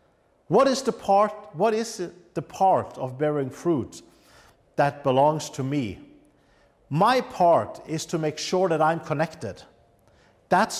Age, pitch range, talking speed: 50-69, 125-180 Hz, 140 wpm